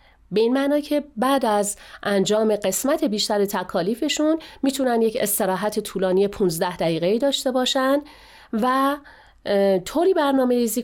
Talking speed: 115 wpm